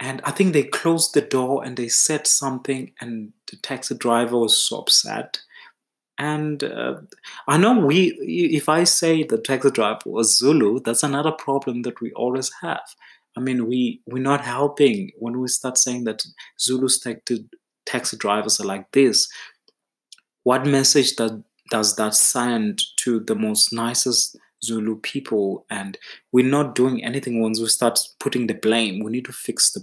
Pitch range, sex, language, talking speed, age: 115-140 Hz, male, English, 165 wpm, 20-39